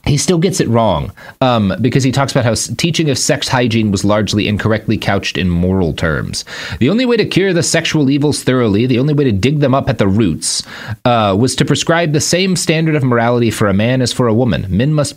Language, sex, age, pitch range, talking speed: English, male, 30-49, 95-130 Hz, 235 wpm